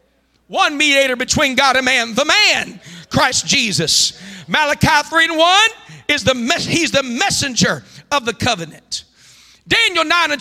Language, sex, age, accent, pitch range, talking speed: English, male, 50-69, American, 260-365 Hz, 135 wpm